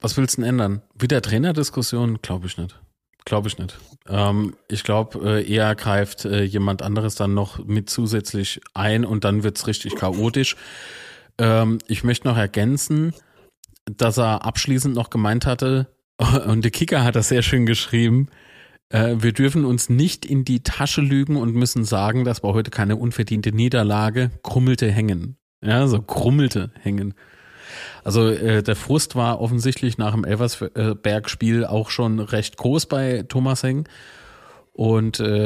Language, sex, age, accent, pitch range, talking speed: German, male, 30-49, German, 105-130 Hz, 160 wpm